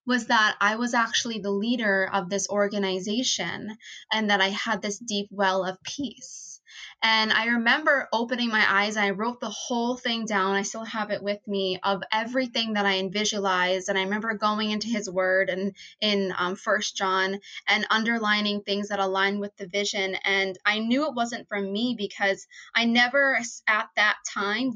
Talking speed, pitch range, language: 185 wpm, 195-235 Hz, English